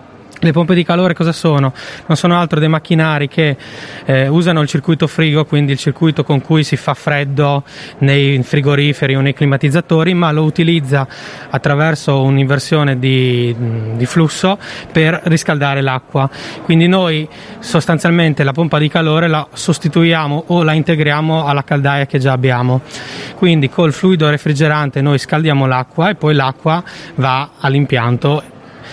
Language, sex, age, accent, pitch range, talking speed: Italian, male, 20-39, native, 140-165 Hz, 145 wpm